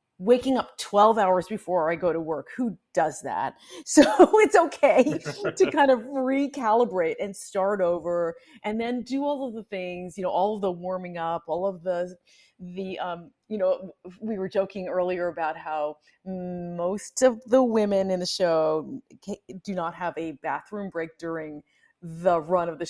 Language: English